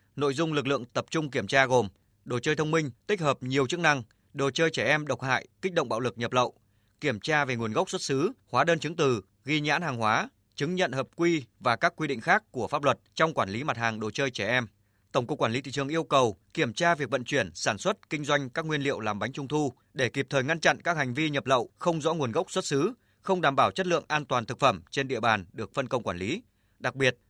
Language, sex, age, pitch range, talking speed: Vietnamese, male, 20-39, 120-155 Hz, 275 wpm